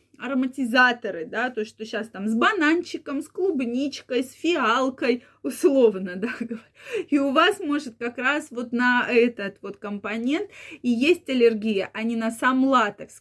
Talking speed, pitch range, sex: 150 wpm, 225-300 Hz, female